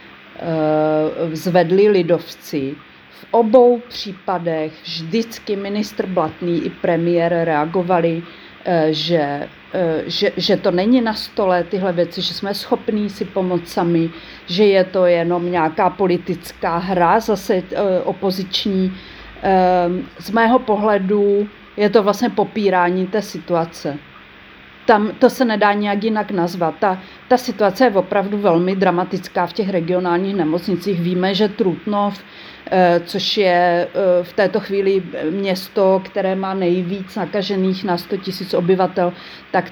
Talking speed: 120 wpm